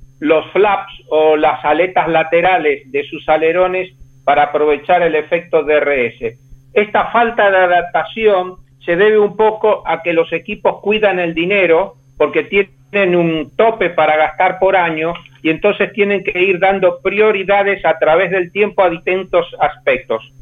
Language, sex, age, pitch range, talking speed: Spanish, male, 50-69, 155-195 Hz, 150 wpm